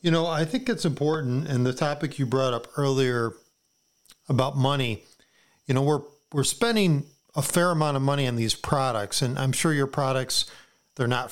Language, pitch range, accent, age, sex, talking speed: English, 125-150 Hz, American, 40-59, male, 185 wpm